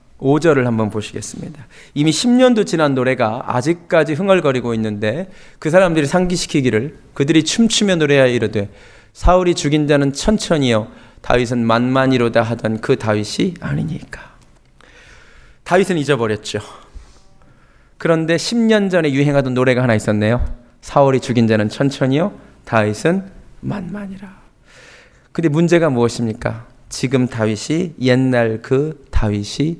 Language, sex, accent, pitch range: Korean, male, native, 115-155 Hz